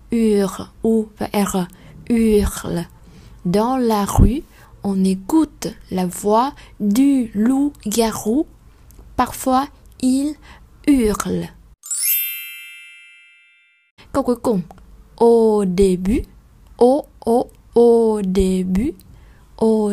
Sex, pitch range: female, 185-245 Hz